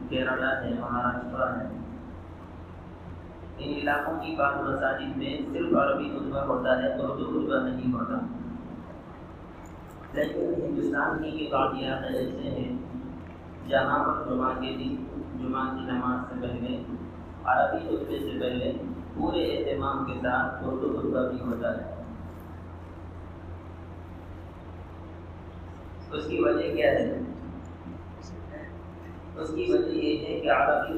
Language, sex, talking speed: English, male, 90 wpm